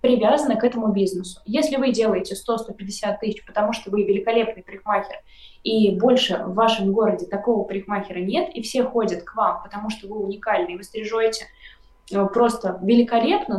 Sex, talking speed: female, 155 wpm